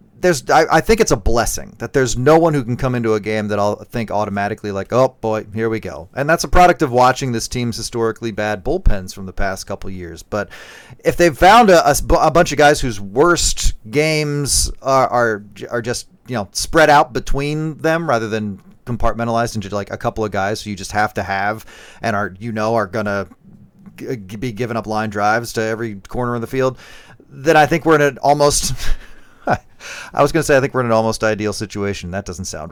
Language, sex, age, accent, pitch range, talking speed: English, male, 30-49, American, 110-145 Hz, 225 wpm